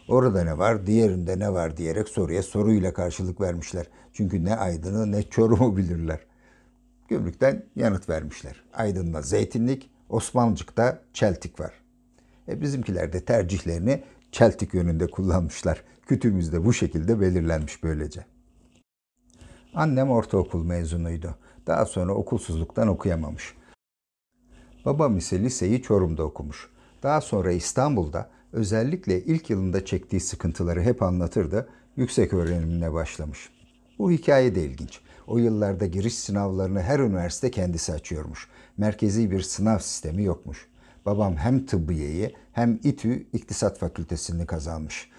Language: Turkish